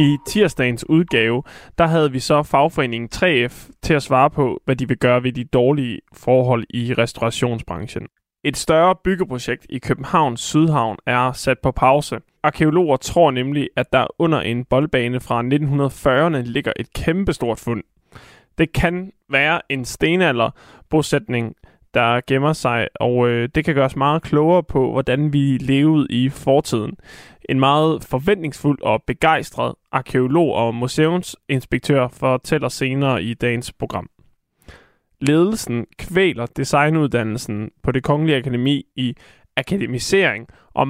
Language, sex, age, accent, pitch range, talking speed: Danish, male, 20-39, native, 125-155 Hz, 135 wpm